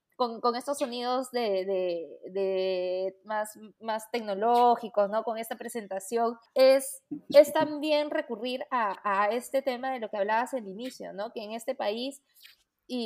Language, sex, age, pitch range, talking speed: Spanish, female, 20-39, 205-255 Hz, 160 wpm